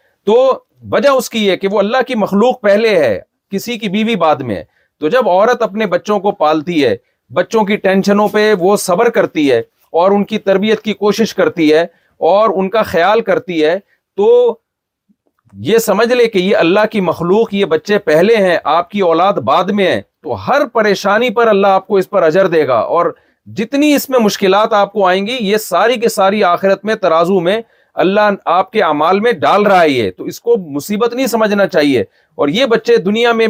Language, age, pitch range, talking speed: Urdu, 40-59, 175-220 Hz, 205 wpm